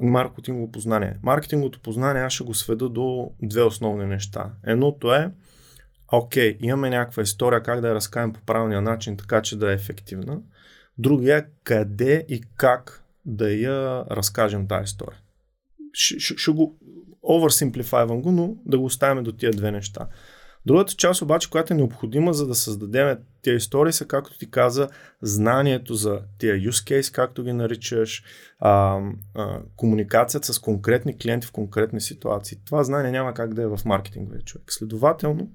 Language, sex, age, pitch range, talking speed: Bulgarian, male, 20-39, 105-135 Hz, 155 wpm